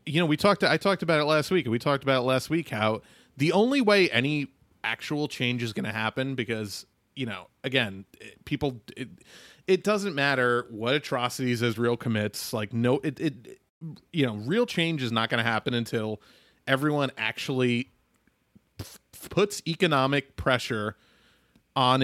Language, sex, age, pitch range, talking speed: English, male, 30-49, 115-145 Hz, 170 wpm